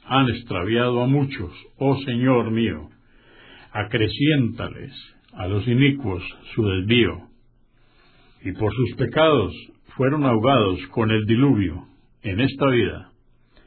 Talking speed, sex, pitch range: 110 wpm, male, 100-135 Hz